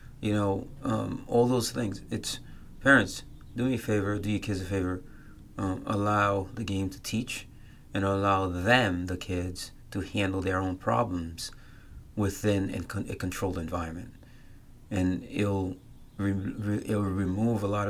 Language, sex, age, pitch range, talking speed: English, male, 30-49, 95-110 Hz, 150 wpm